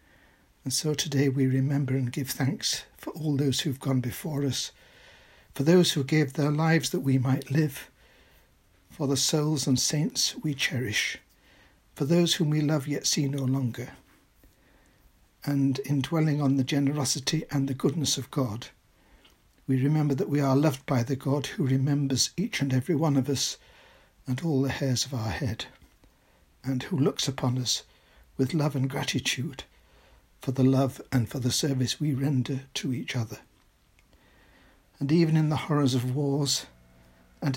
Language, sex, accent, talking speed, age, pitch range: English, male, British, 170 wpm, 60-79, 125-145 Hz